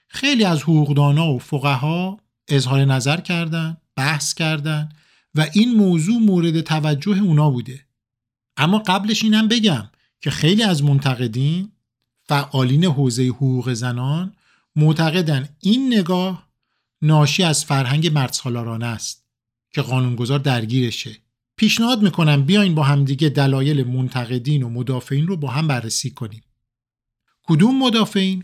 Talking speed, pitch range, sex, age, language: 120 wpm, 130-185 Hz, male, 50-69, Persian